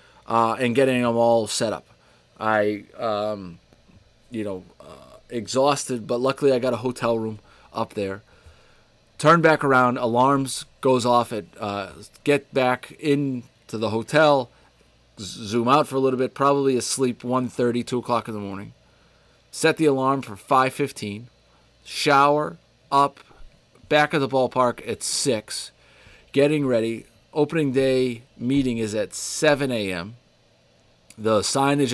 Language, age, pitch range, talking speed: English, 30-49, 110-140 Hz, 140 wpm